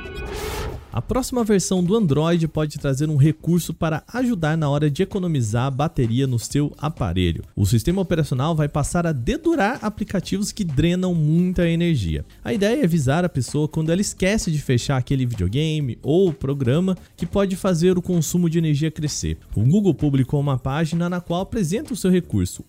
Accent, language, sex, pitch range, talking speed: Brazilian, Portuguese, male, 140-190 Hz, 170 wpm